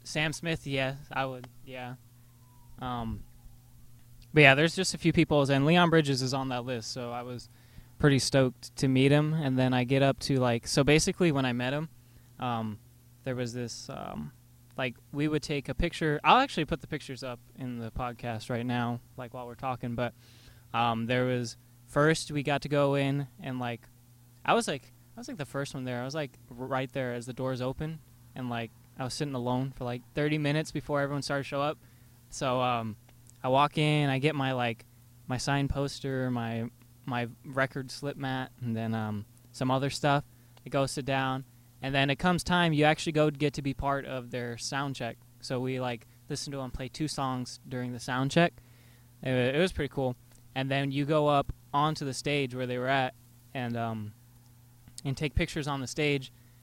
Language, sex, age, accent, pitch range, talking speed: English, male, 20-39, American, 120-140 Hz, 210 wpm